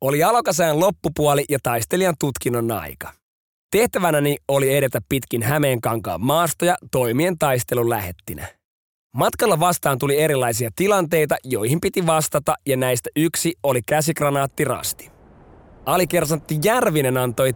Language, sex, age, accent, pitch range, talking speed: Finnish, male, 30-49, native, 125-170 Hz, 115 wpm